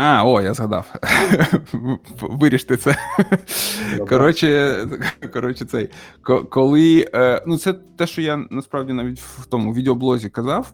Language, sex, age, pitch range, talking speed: Russian, male, 20-39, 105-135 Hz, 115 wpm